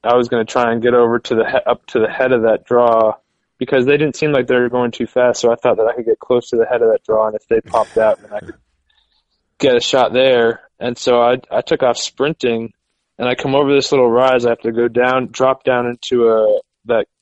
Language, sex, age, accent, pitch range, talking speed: English, male, 20-39, American, 115-130 Hz, 270 wpm